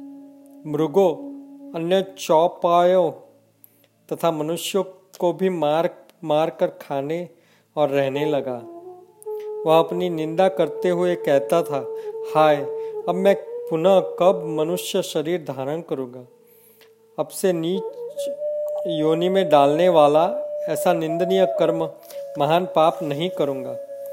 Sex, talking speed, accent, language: male, 110 wpm, native, Hindi